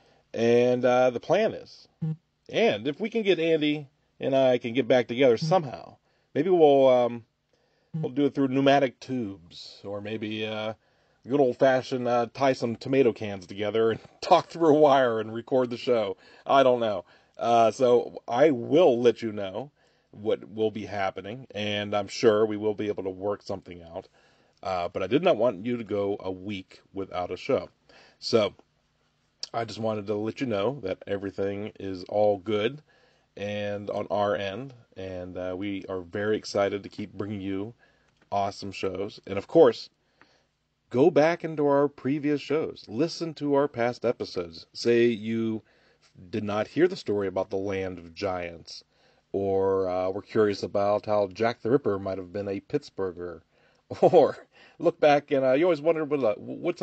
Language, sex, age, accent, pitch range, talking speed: English, male, 40-59, American, 100-135 Hz, 175 wpm